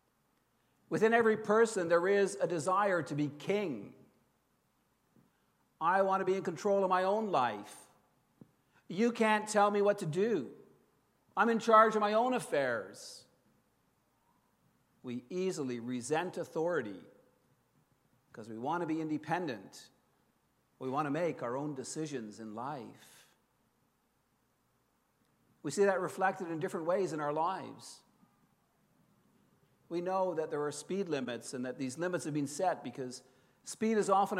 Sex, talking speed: male, 140 wpm